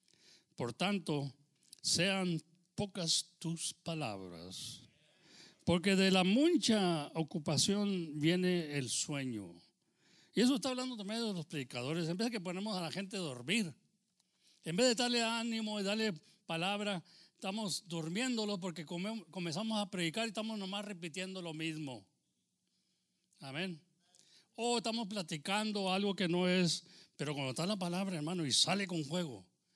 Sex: male